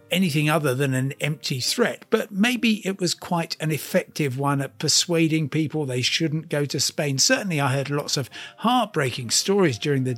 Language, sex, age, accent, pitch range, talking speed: English, male, 50-69, British, 140-165 Hz, 185 wpm